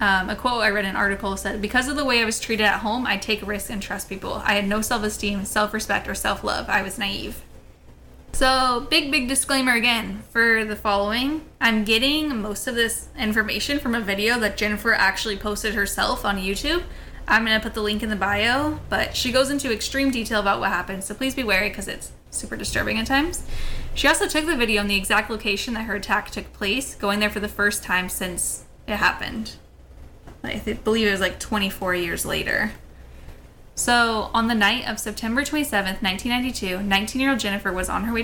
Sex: female